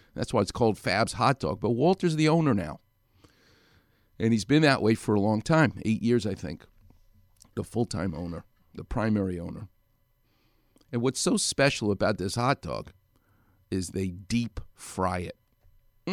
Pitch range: 105-150 Hz